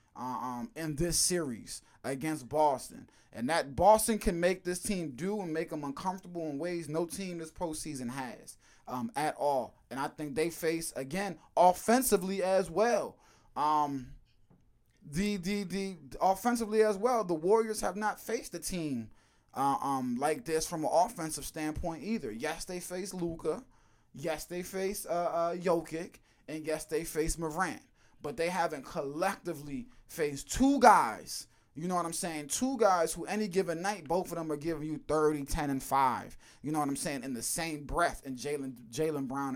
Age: 20-39